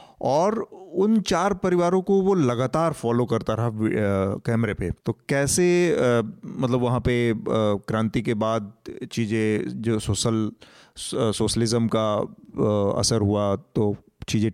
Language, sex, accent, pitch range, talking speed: Hindi, male, native, 110-130 Hz, 120 wpm